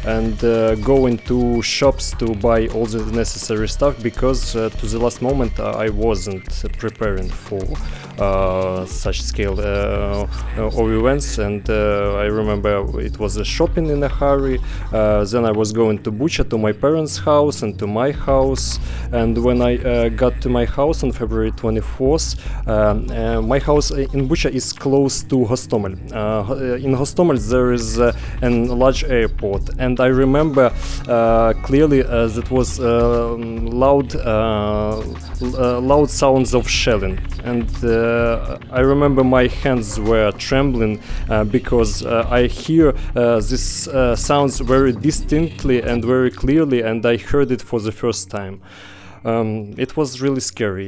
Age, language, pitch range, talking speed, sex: 20-39, English, 105-130 Hz, 165 wpm, male